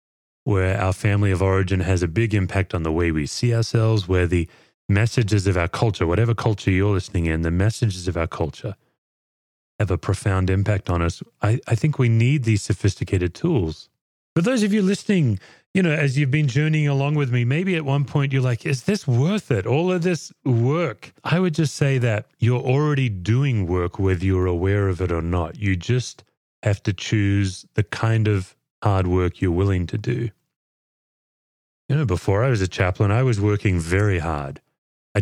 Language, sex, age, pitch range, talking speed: English, male, 30-49, 95-125 Hz, 200 wpm